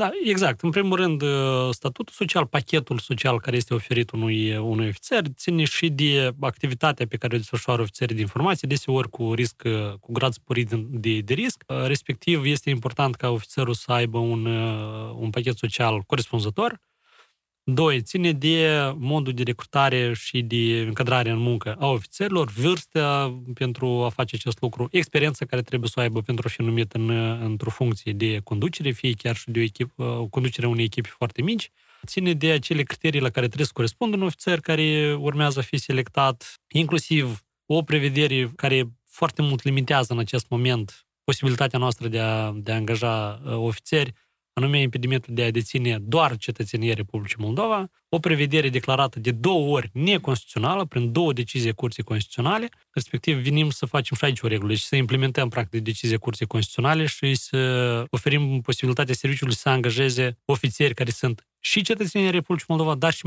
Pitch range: 115-145 Hz